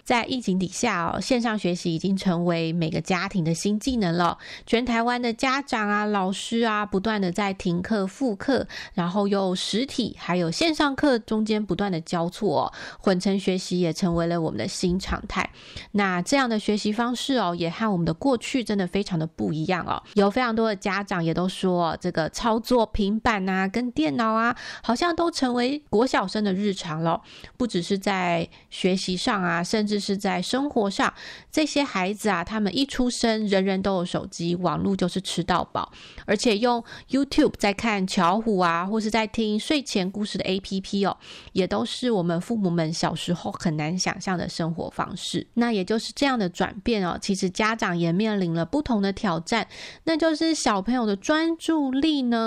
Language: Chinese